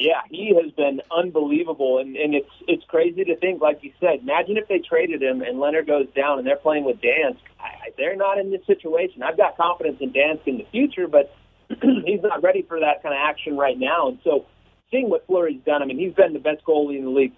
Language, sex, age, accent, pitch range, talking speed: English, male, 40-59, American, 140-170 Hz, 240 wpm